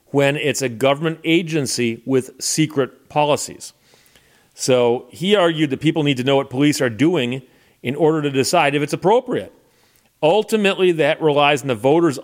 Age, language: 40-59, English